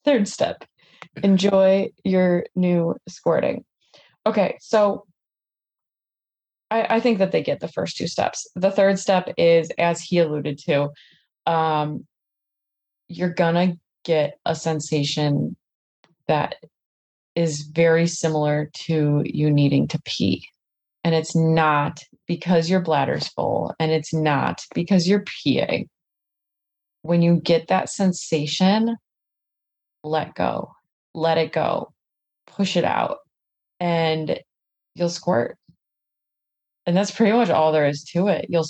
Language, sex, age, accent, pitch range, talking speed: English, female, 20-39, American, 140-175 Hz, 125 wpm